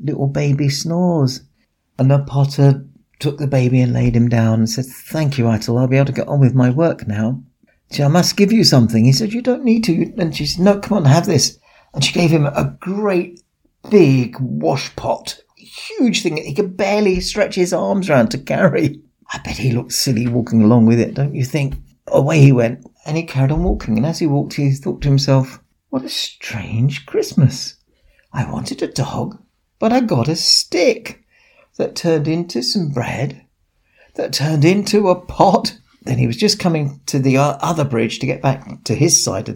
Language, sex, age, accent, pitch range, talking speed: English, male, 50-69, British, 135-195 Hz, 205 wpm